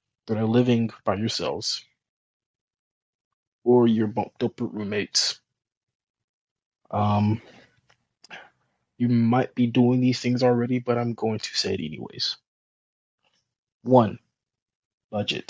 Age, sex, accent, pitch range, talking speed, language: 20-39, male, American, 110-125 Hz, 100 wpm, English